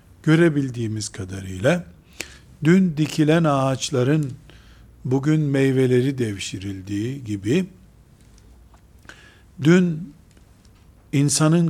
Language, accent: Turkish, native